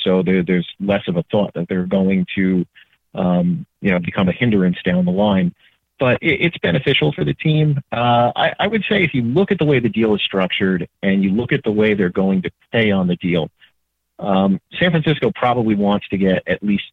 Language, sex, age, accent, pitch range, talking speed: English, male, 40-59, American, 95-120 Hz, 220 wpm